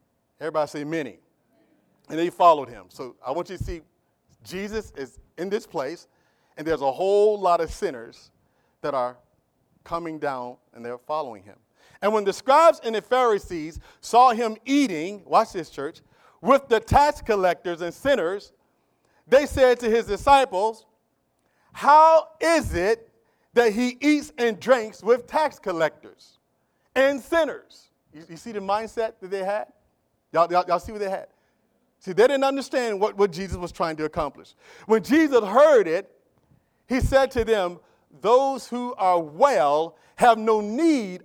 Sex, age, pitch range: male, 40-59, 185-270 Hz